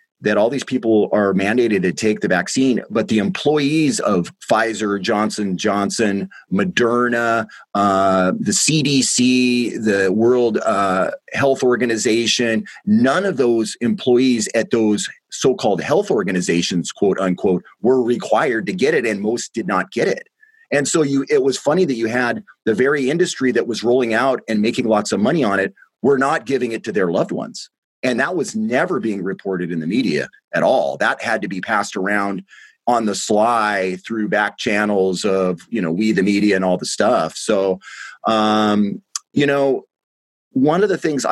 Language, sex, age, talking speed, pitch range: English, male, 30-49, 175 wpm, 100-125 Hz